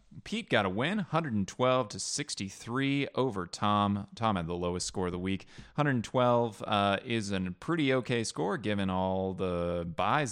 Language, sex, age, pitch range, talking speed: English, male, 30-49, 95-120 Hz, 165 wpm